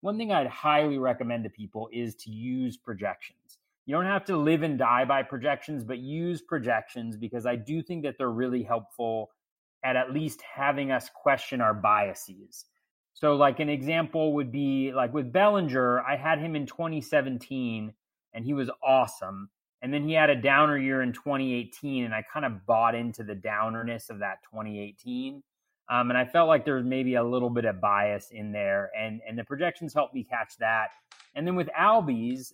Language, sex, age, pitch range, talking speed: English, male, 30-49, 115-145 Hz, 190 wpm